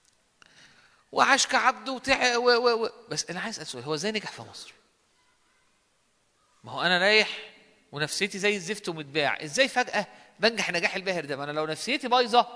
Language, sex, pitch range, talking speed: Arabic, male, 155-215 Hz, 155 wpm